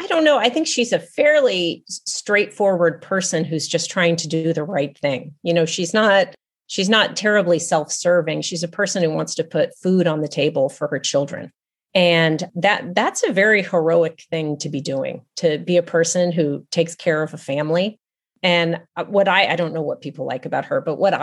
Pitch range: 160-195 Hz